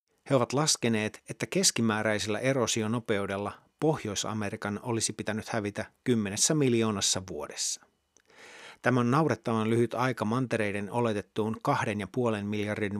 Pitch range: 105-125 Hz